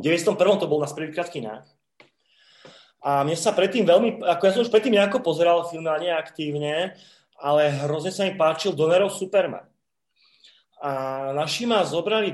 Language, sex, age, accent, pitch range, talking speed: Czech, male, 30-49, native, 150-190 Hz, 155 wpm